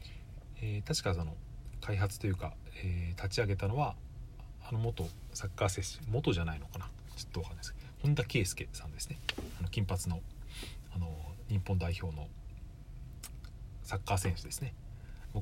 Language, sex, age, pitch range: Japanese, male, 40-59, 90-120 Hz